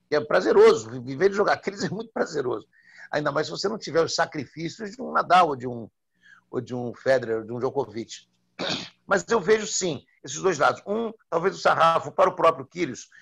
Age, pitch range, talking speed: 60-79, 140-195 Hz, 210 wpm